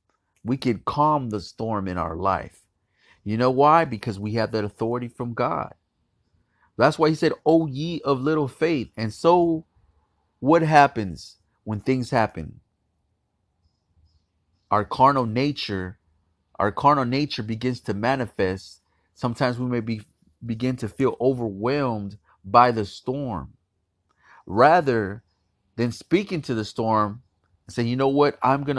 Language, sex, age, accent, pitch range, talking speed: English, male, 30-49, American, 100-135 Hz, 140 wpm